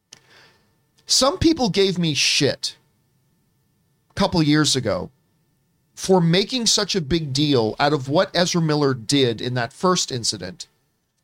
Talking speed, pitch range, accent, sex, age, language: 135 wpm, 150-215 Hz, American, male, 40-59, English